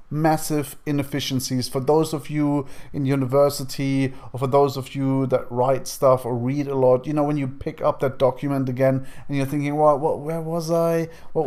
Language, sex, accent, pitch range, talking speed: English, male, German, 135-155 Hz, 200 wpm